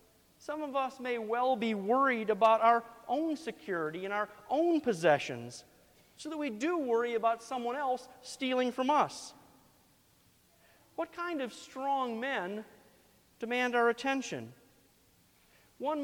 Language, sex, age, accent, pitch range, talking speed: English, male, 40-59, American, 215-275 Hz, 130 wpm